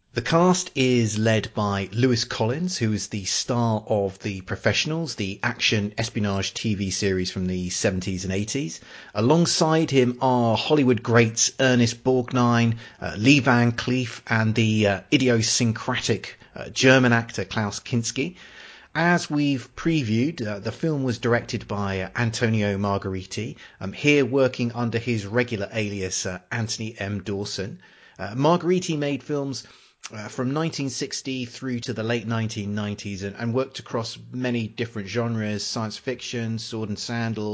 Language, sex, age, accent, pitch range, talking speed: English, male, 30-49, British, 105-130 Hz, 145 wpm